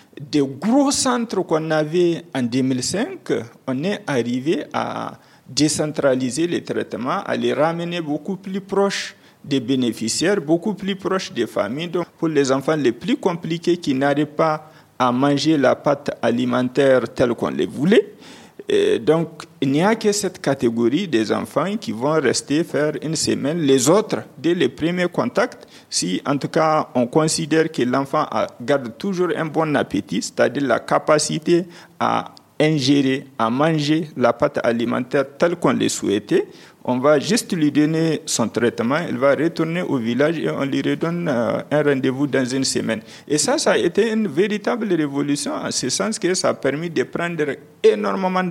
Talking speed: 165 wpm